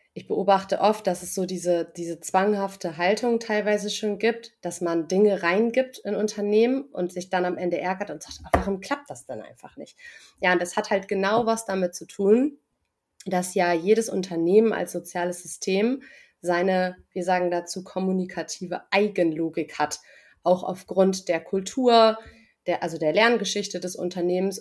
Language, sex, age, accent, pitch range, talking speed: German, female, 30-49, German, 175-210 Hz, 160 wpm